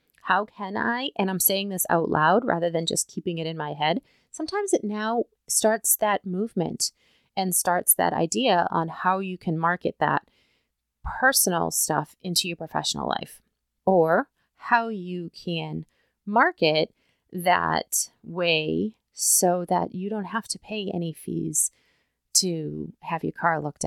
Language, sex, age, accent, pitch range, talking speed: English, female, 30-49, American, 180-245 Hz, 150 wpm